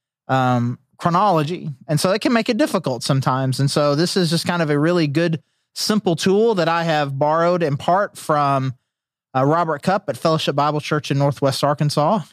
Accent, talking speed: American, 190 wpm